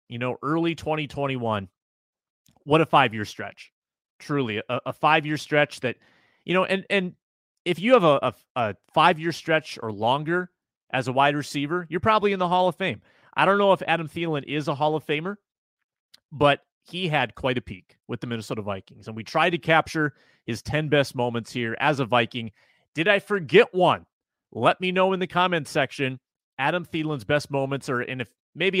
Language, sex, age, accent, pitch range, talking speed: English, male, 30-49, American, 120-165 Hz, 190 wpm